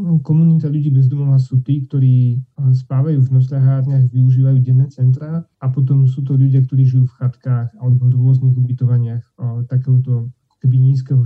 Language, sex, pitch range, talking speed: Slovak, male, 125-135 Hz, 145 wpm